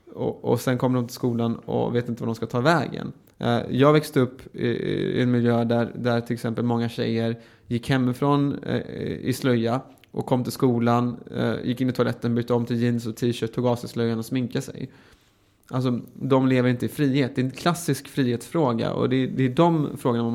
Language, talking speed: Swedish, 210 wpm